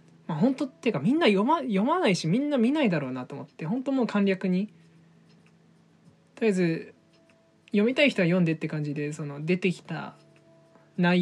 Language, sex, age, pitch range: Japanese, male, 20-39, 155-210 Hz